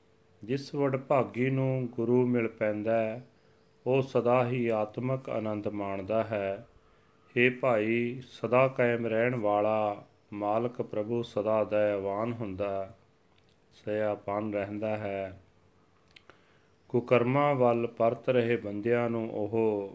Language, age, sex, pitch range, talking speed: Punjabi, 30-49, male, 105-120 Hz, 105 wpm